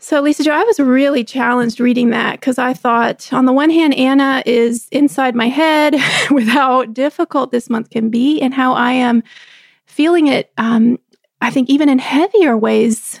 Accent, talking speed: American, 185 wpm